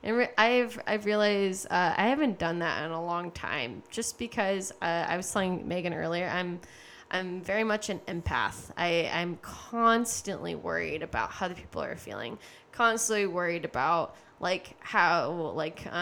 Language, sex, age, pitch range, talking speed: English, female, 10-29, 175-225 Hz, 165 wpm